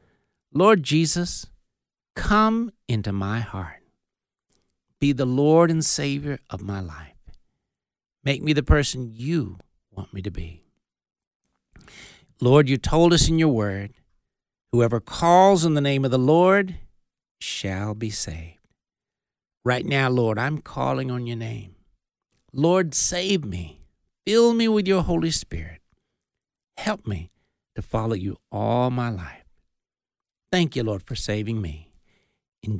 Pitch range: 100-145 Hz